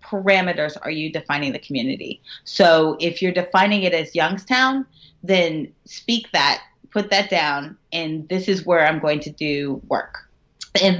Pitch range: 160-195 Hz